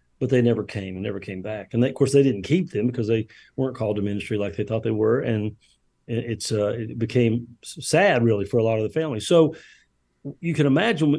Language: English